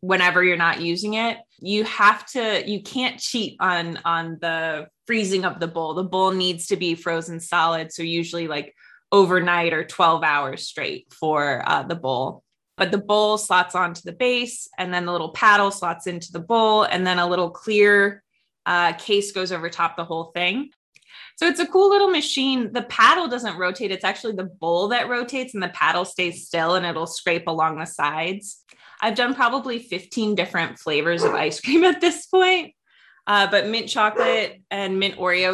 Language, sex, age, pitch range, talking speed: English, female, 20-39, 170-225 Hz, 190 wpm